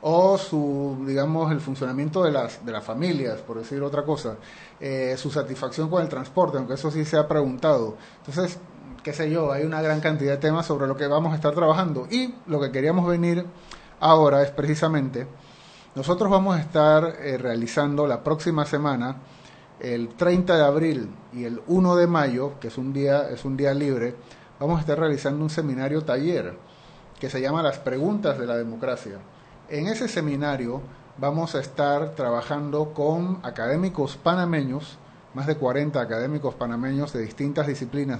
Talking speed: 170 wpm